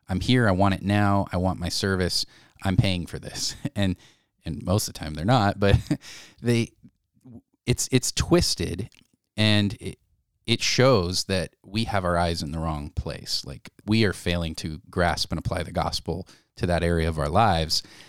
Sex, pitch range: male, 90-115 Hz